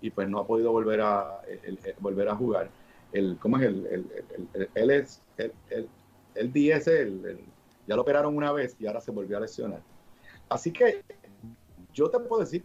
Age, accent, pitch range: 50-69, Venezuelan, 110-180 Hz